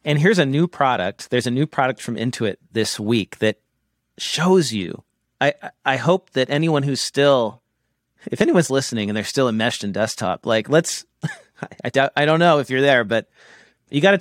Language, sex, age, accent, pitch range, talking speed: English, male, 40-59, American, 105-140 Hz, 185 wpm